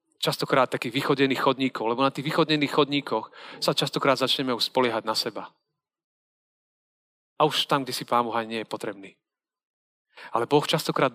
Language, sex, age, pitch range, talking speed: Slovak, male, 40-59, 130-160 Hz, 150 wpm